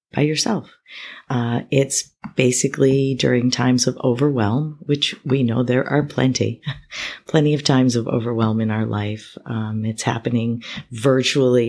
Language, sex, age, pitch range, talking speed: English, female, 40-59, 115-135 Hz, 140 wpm